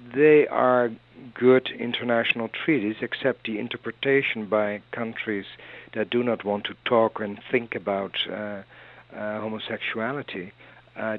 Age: 60-79